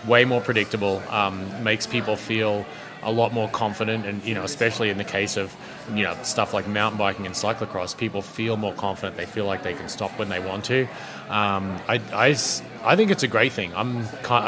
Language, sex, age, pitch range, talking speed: English, male, 30-49, 100-125 Hz, 210 wpm